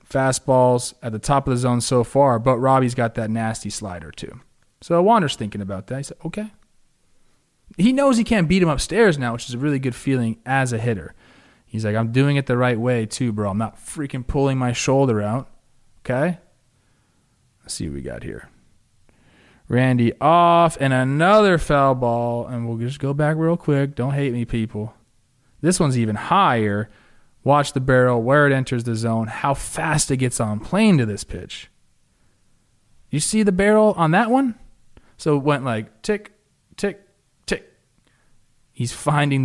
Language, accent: English, American